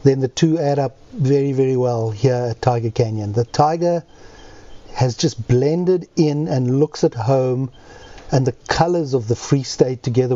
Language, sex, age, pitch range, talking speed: English, male, 50-69, 120-140 Hz, 175 wpm